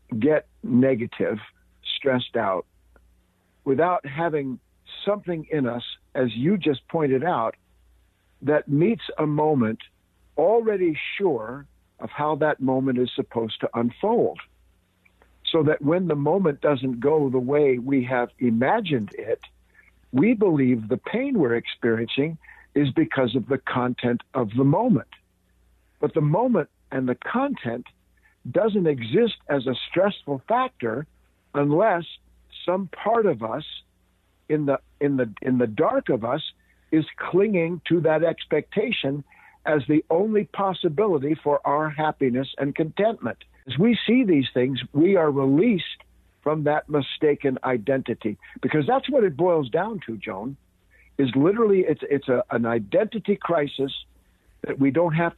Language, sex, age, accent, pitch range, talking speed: English, male, 60-79, American, 120-165 Hz, 140 wpm